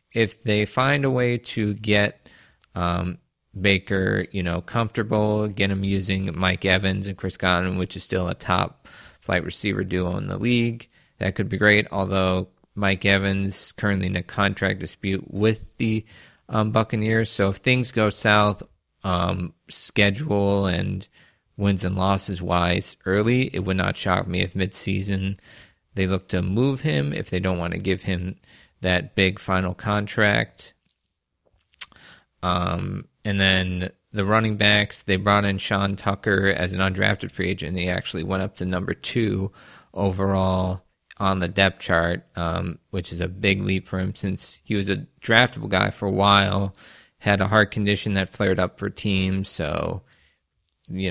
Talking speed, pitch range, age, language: 165 wpm, 90-105 Hz, 20-39, English